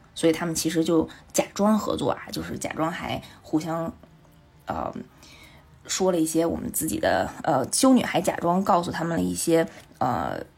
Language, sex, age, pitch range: Chinese, female, 20-39, 160-205 Hz